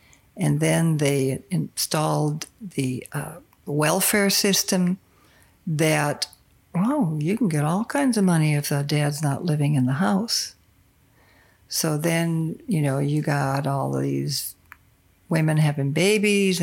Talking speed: 130 wpm